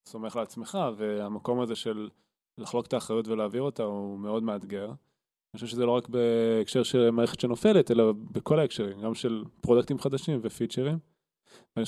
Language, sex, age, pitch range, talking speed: Hebrew, male, 20-39, 115-140 Hz, 155 wpm